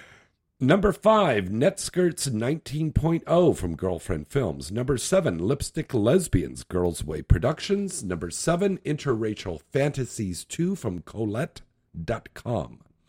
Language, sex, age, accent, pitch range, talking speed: English, male, 50-69, American, 90-140 Hz, 95 wpm